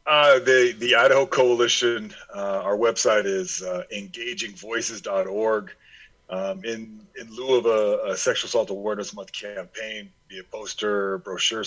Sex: male